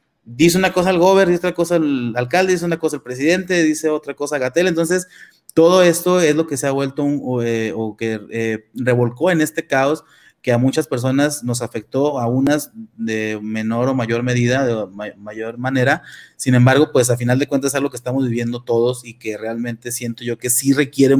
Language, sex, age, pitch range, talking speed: Spanish, male, 30-49, 125-155 Hz, 215 wpm